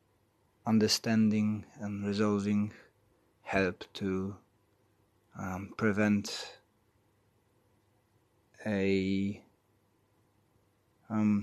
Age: 20-39